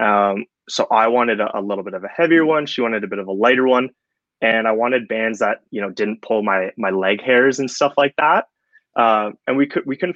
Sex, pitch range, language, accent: male, 100-120 Hz, English, American